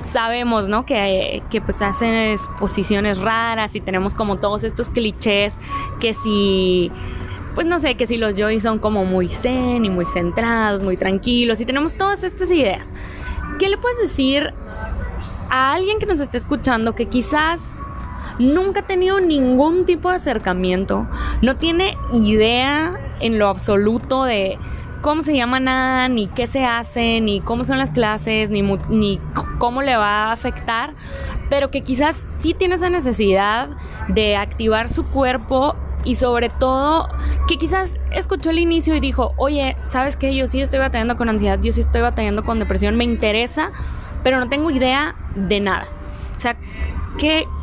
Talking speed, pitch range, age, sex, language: 165 wpm, 210-275 Hz, 20-39, female, Spanish